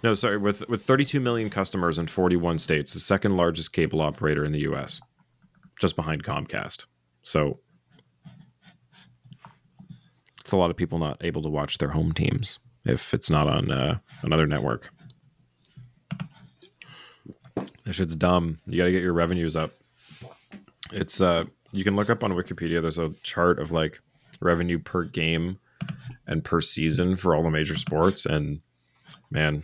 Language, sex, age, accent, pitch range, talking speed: English, male, 30-49, American, 80-110 Hz, 160 wpm